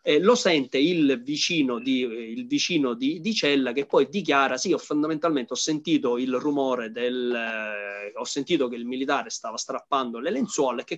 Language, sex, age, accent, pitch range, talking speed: Italian, male, 30-49, native, 125-150 Hz, 180 wpm